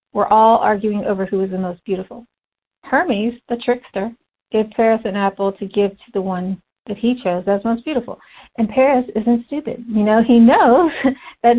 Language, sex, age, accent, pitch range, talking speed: English, female, 50-69, American, 195-240 Hz, 185 wpm